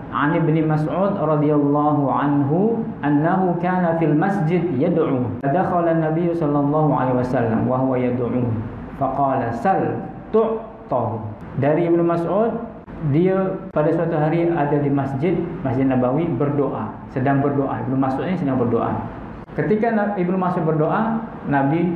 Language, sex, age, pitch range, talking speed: Malay, male, 50-69, 130-170 Hz, 125 wpm